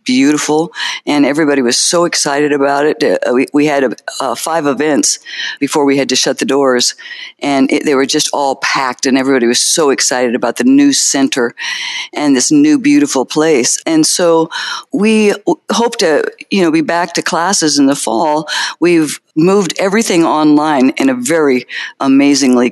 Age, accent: 50-69, American